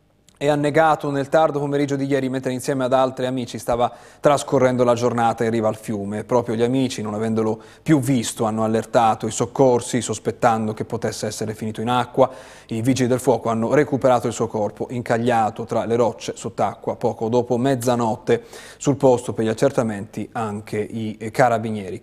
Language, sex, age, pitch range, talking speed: Italian, male, 30-49, 115-140 Hz, 170 wpm